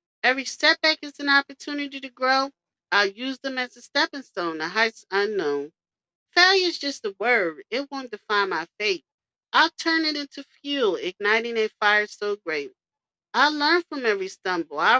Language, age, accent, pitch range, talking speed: English, 40-59, American, 215-300 Hz, 170 wpm